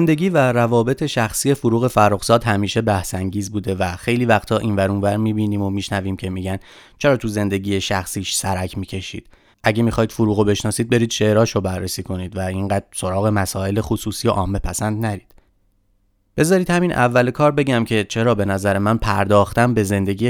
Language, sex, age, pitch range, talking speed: Persian, male, 30-49, 100-120 Hz, 165 wpm